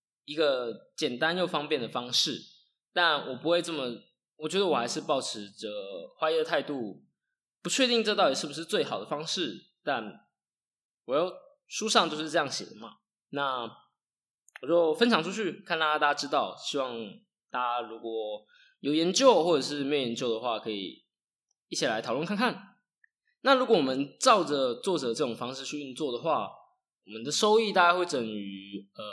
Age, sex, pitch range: 20-39, male, 135-220 Hz